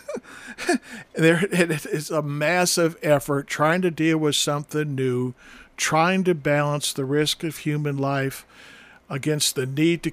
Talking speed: 140 wpm